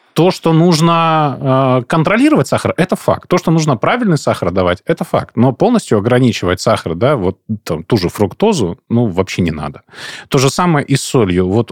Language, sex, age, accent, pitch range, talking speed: Russian, male, 20-39, native, 105-140 Hz, 180 wpm